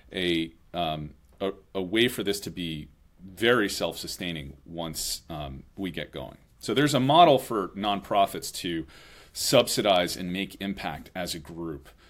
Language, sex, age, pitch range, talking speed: English, male, 30-49, 80-95 Hz, 150 wpm